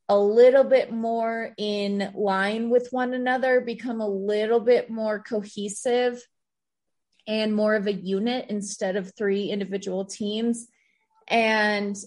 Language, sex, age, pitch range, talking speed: English, female, 20-39, 195-230 Hz, 130 wpm